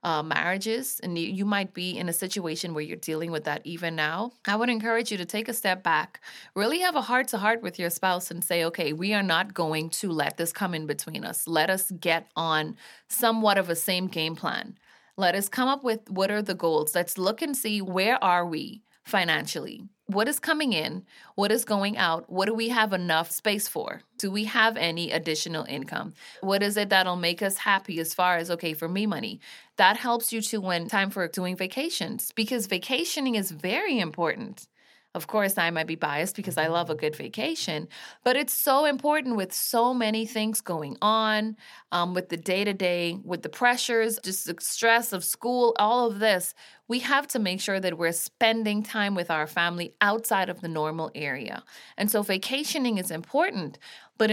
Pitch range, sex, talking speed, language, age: 170-225 Hz, female, 200 wpm, English, 20-39